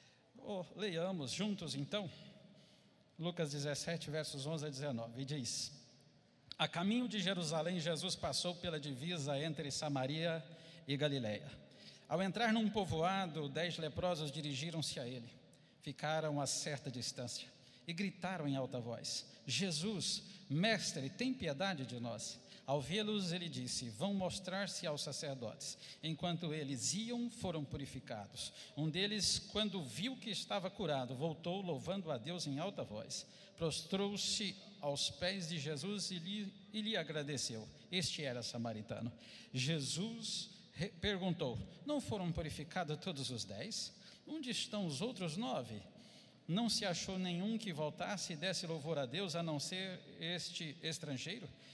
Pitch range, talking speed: 140-195 Hz, 135 wpm